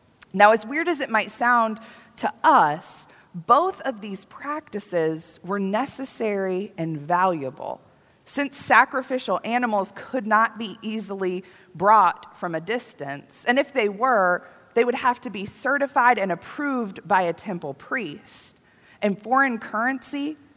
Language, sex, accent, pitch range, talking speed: English, female, American, 175-245 Hz, 135 wpm